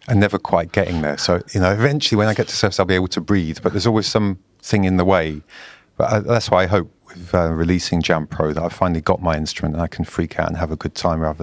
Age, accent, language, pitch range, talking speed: 40-59, British, English, 80-95 Hz, 290 wpm